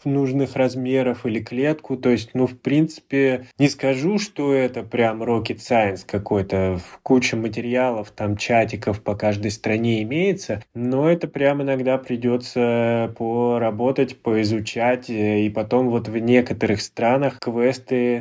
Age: 20-39